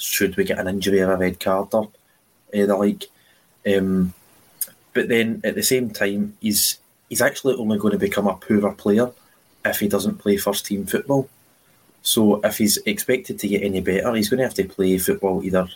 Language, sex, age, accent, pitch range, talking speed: English, male, 20-39, British, 95-115 Hz, 200 wpm